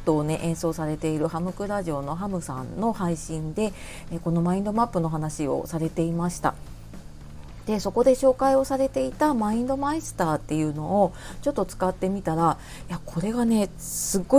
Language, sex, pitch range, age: Japanese, female, 165-225 Hz, 40-59